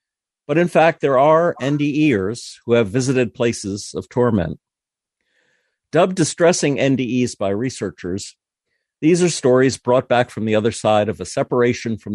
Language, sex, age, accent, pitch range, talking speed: English, male, 50-69, American, 105-135 Hz, 150 wpm